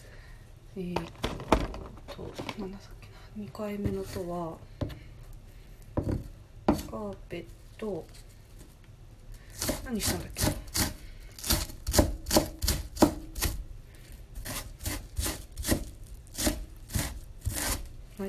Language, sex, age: Japanese, female, 30-49